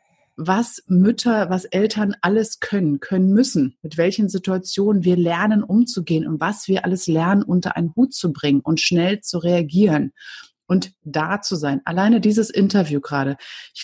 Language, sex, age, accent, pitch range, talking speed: German, female, 30-49, German, 165-210 Hz, 160 wpm